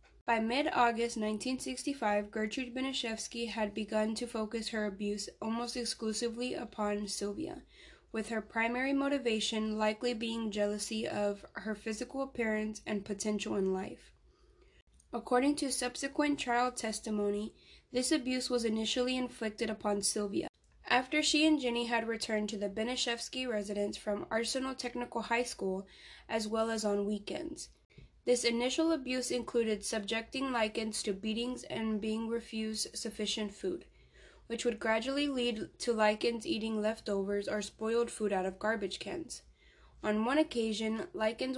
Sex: female